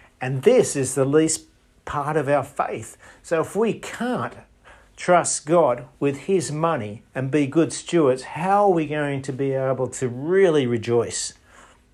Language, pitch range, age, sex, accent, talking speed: English, 125-165 Hz, 50-69, male, Australian, 160 wpm